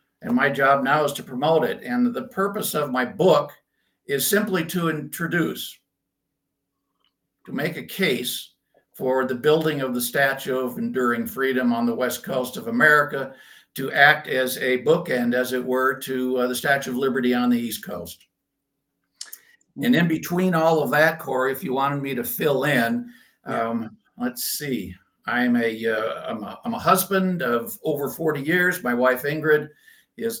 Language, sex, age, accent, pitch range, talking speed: English, male, 60-79, American, 125-160 Hz, 170 wpm